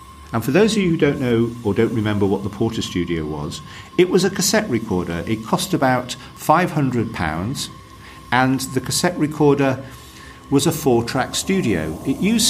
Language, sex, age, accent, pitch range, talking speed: English, male, 50-69, British, 105-155 Hz, 170 wpm